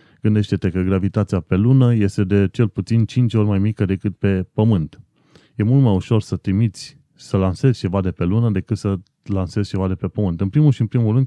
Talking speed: 220 wpm